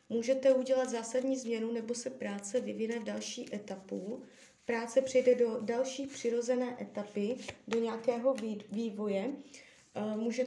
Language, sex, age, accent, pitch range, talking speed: Czech, female, 20-39, native, 225-255 Hz, 120 wpm